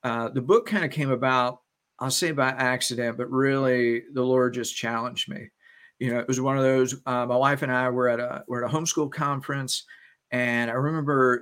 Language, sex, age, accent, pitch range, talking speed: English, male, 50-69, American, 125-150 Hz, 215 wpm